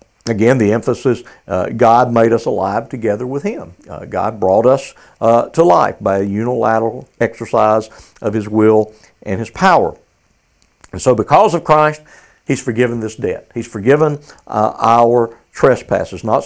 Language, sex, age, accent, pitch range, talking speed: English, male, 60-79, American, 115-150 Hz, 155 wpm